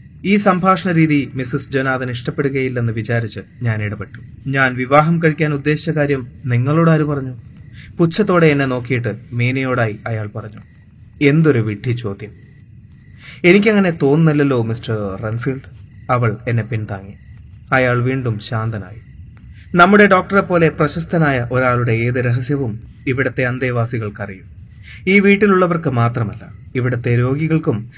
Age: 30-49